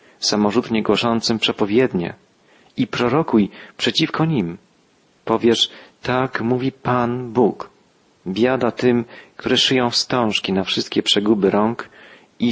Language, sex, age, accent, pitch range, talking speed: Polish, male, 40-59, native, 105-125 Hz, 105 wpm